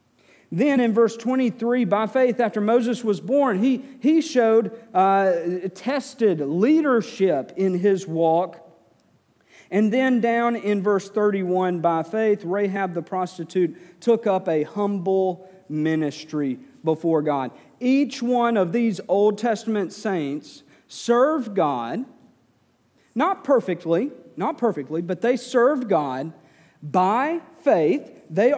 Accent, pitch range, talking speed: American, 170-245 Hz, 120 wpm